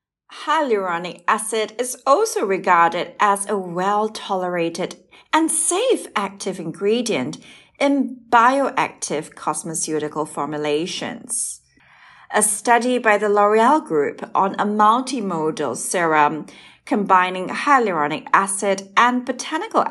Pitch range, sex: 185-245 Hz, female